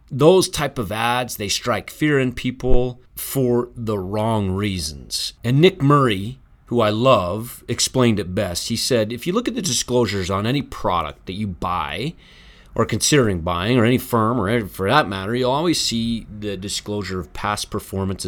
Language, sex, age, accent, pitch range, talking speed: English, male, 30-49, American, 95-125 Hz, 175 wpm